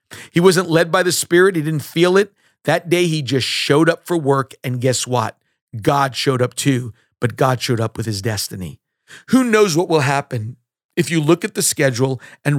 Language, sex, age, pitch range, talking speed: English, male, 50-69, 125-160 Hz, 210 wpm